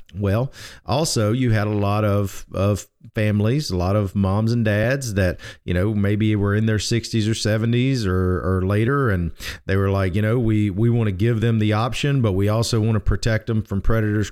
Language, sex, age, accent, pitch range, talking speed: English, male, 40-59, American, 100-120 Hz, 215 wpm